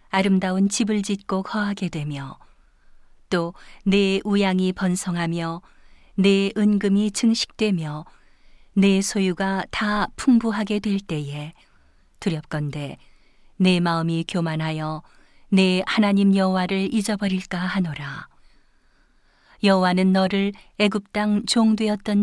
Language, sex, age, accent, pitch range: Korean, female, 40-59, native, 170-200 Hz